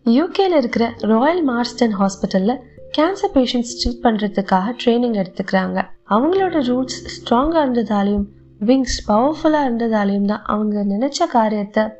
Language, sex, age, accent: Tamil, female, 20-39, native